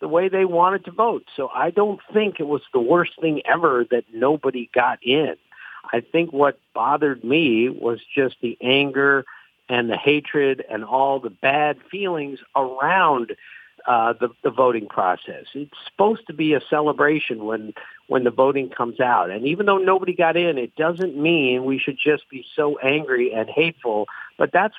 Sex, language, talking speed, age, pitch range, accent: male, English, 180 wpm, 50-69, 135-175 Hz, American